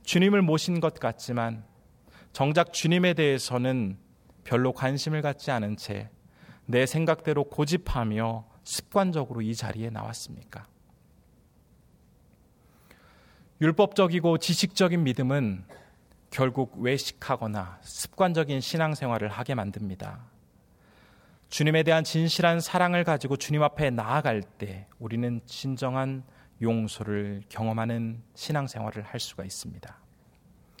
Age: 30-49